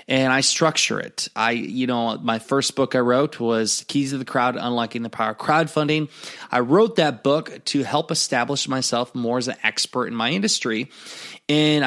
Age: 20-39